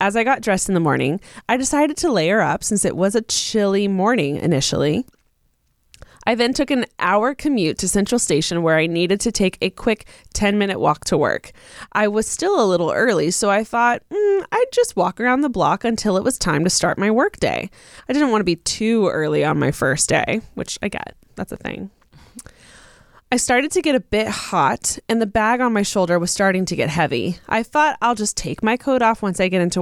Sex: female